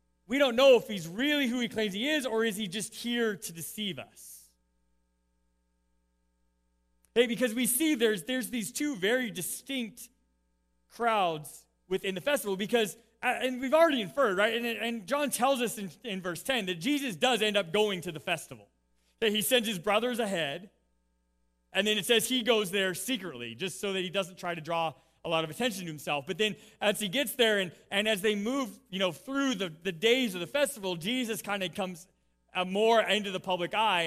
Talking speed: 200 wpm